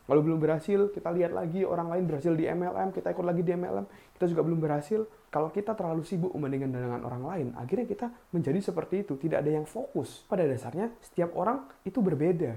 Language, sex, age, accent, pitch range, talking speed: Indonesian, male, 20-39, native, 135-180 Hz, 205 wpm